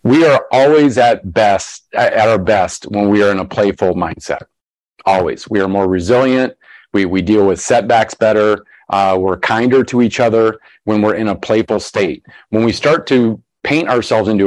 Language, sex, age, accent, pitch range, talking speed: English, male, 40-59, American, 100-130 Hz, 185 wpm